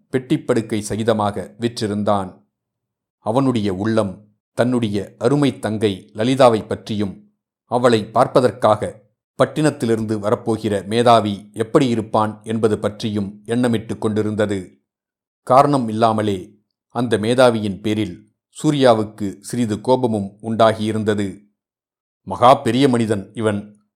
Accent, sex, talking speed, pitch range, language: native, male, 85 wpm, 105-120 Hz, Tamil